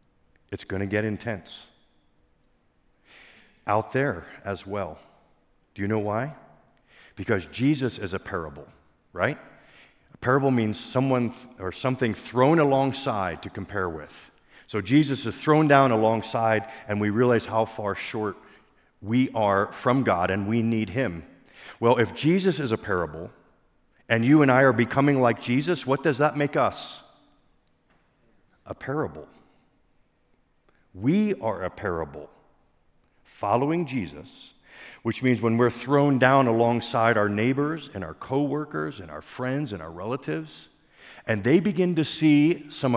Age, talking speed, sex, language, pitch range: 50-69, 140 wpm, male, English, 100-145 Hz